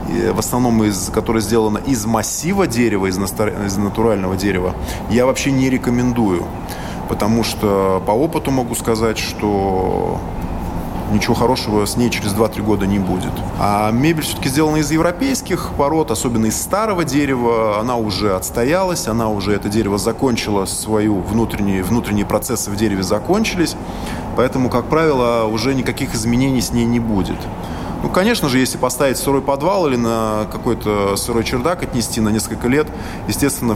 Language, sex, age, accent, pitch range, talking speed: Russian, male, 20-39, native, 100-125 Hz, 150 wpm